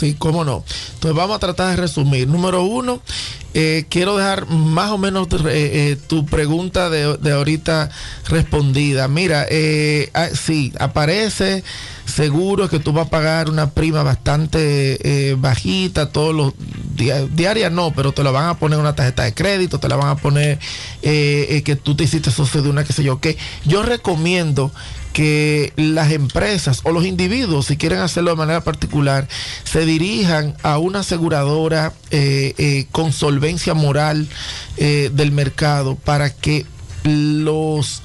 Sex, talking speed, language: male, 165 wpm, Spanish